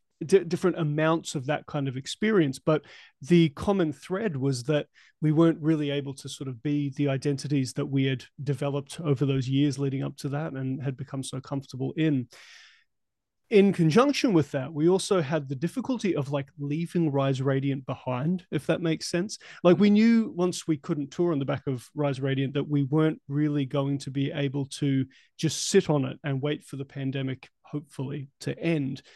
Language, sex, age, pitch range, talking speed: English, male, 30-49, 140-170 Hz, 190 wpm